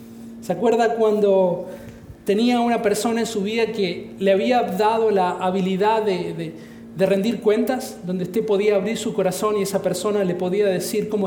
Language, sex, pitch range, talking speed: English, male, 190-240 Hz, 175 wpm